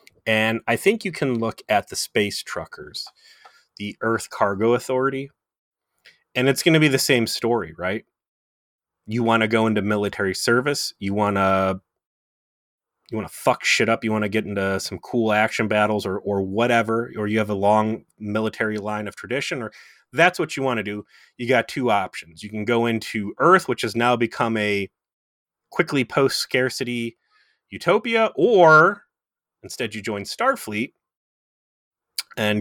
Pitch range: 95-115 Hz